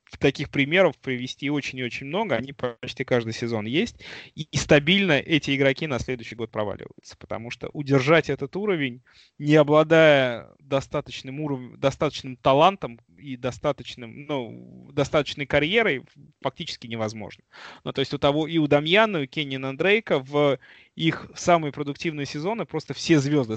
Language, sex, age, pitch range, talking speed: Russian, male, 20-39, 125-155 Hz, 145 wpm